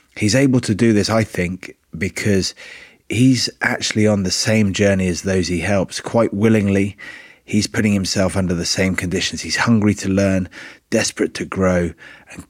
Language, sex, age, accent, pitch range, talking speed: English, male, 30-49, British, 90-105 Hz, 170 wpm